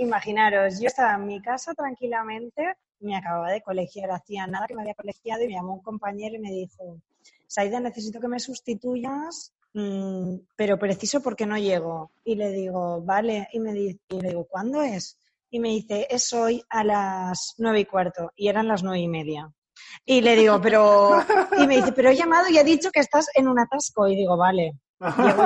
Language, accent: Spanish, Spanish